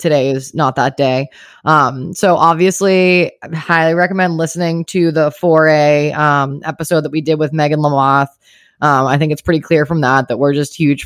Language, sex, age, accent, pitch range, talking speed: English, female, 20-39, American, 135-160 Hz, 190 wpm